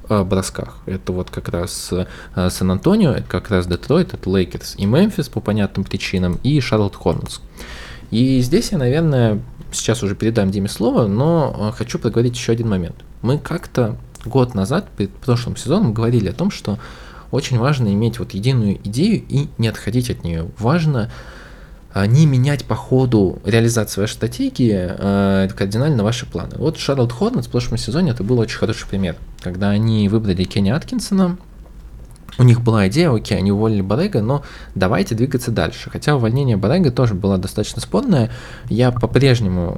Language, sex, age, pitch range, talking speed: Russian, male, 20-39, 95-130 Hz, 160 wpm